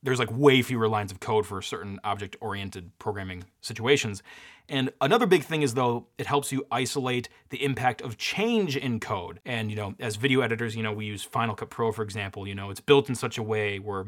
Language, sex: English, male